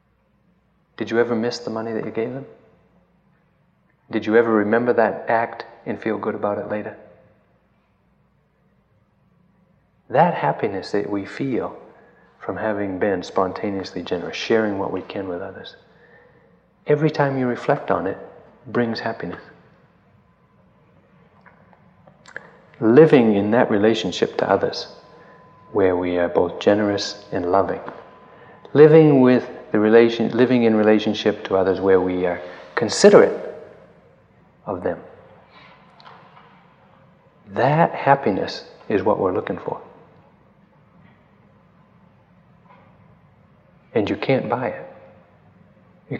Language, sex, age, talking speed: English, male, 30-49, 115 wpm